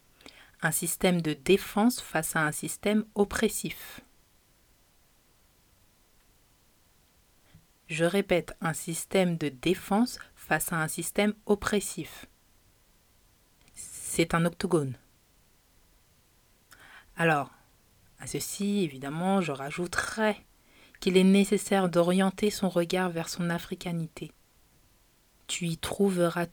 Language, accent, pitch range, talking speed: French, French, 150-195 Hz, 95 wpm